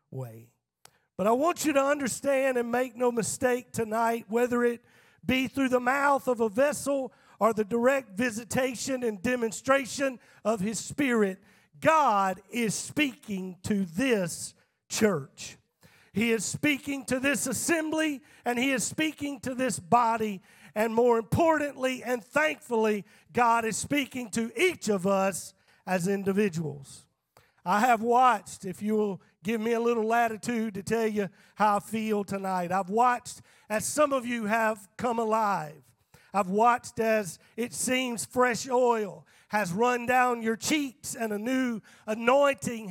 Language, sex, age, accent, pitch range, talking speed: English, male, 50-69, American, 205-255 Hz, 150 wpm